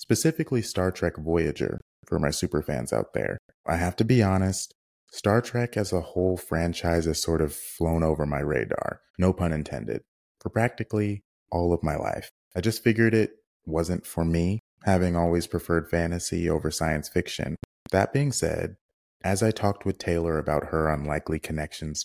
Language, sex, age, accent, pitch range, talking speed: English, male, 30-49, American, 80-95 Hz, 170 wpm